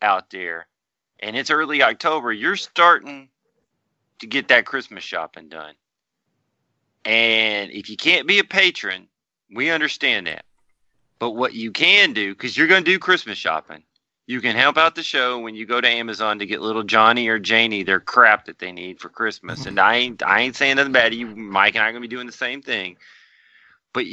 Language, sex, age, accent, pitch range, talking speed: English, male, 30-49, American, 100-130 Hz, 200 wpm